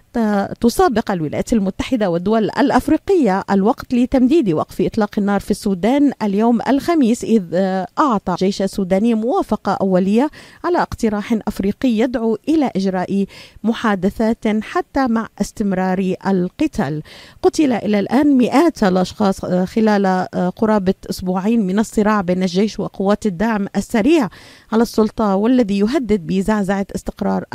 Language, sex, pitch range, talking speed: Arabic, female, 195-240 Hz, 115 wpm